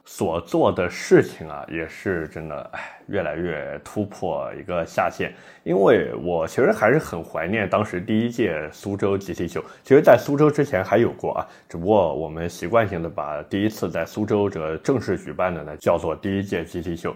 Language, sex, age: Chinese, male, 20-39